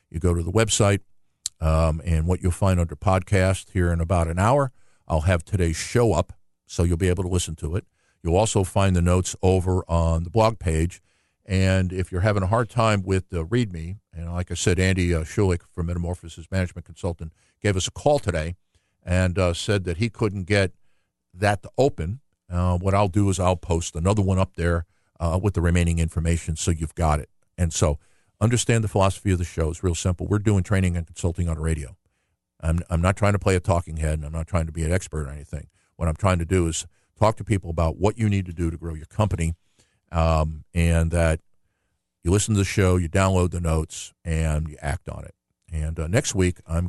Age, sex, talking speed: 50-69, male, 225 wpm